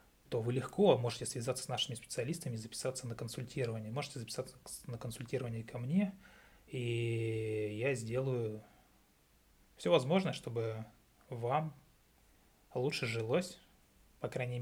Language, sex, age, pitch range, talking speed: Russian, male, 20-39, 115-140 Hz, 120 wpm